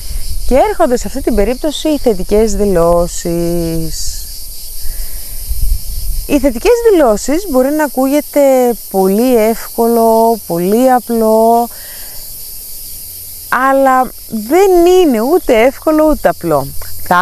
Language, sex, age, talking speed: Greek, female, 30-49, 95 wpm